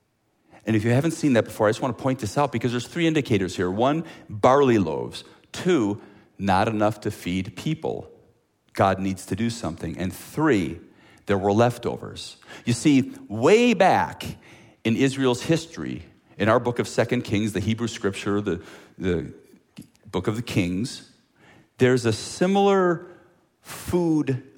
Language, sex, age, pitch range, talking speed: English, male, 40-59, 95-135 Hz, 155 wpm